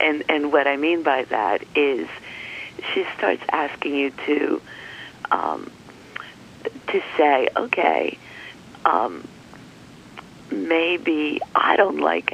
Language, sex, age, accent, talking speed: English, female, 40-59, American, 105 wpm